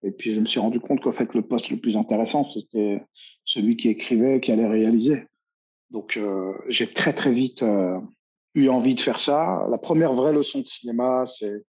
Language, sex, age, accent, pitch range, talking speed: French, male, 50-69, French, 105-125 Hz, 210 wpm